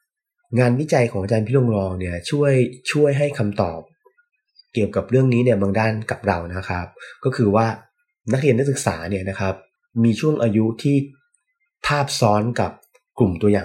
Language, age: Thai, 20-39